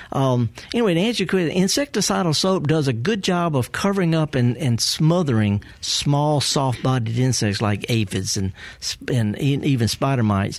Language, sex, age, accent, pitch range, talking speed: English, male, 50-69, American, 115-160 Hz, 140 wpm